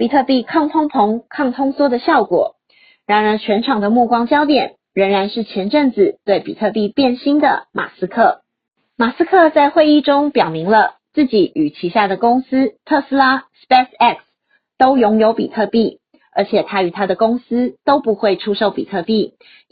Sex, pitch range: female, 205-280 Hz